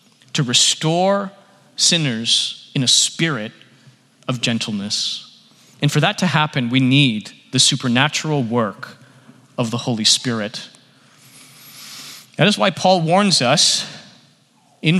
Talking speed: 115 wpm